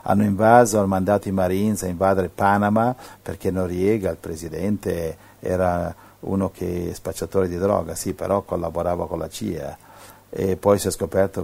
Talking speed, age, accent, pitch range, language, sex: 165 wpm, 50-69, native, 90-110 Hz, Italian, male